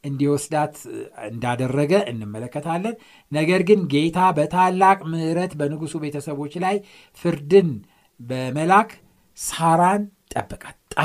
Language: Amharic